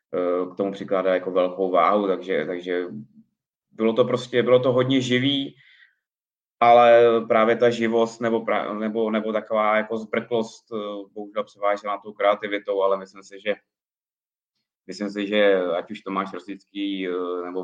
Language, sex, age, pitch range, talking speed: Czech, male, 20-39, 90-105 Hz, 145 wpm